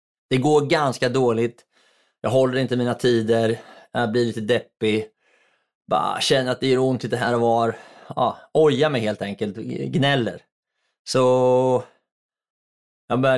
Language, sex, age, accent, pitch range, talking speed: Swedish, male, 20-39, native, 110-130 Hz, 150 wpm